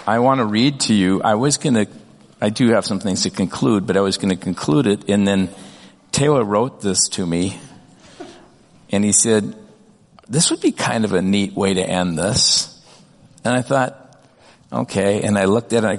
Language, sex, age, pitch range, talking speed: English, male, 50-69, 100-135 Hz, 210 wpm